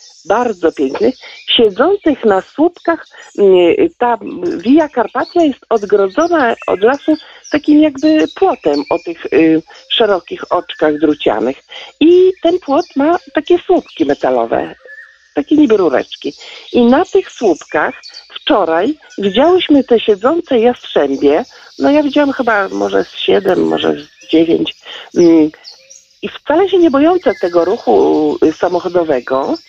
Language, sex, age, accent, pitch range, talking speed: Polish, male, 50-69, native, 205-320 Hz, 120 wpm